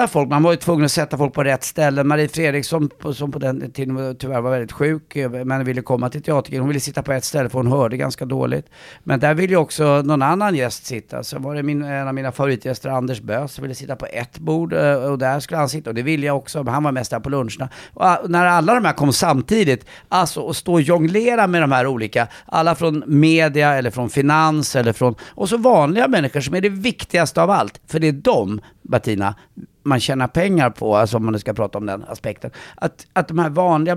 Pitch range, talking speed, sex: 130-160 Hz, 235 wpm, male